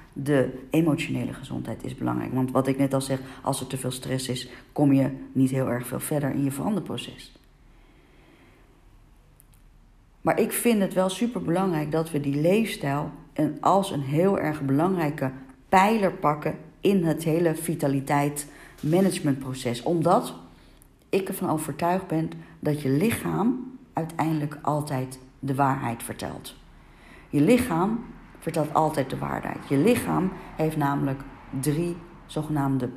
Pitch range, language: 135-170 Hz, Dutch